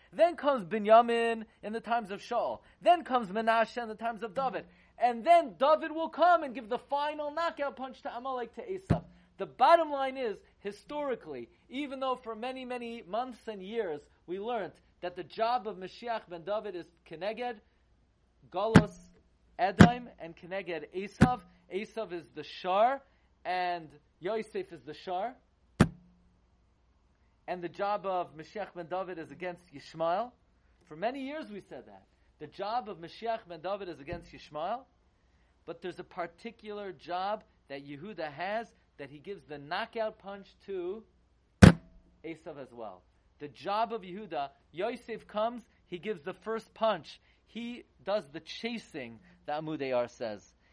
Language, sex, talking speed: English, male, 155 wpm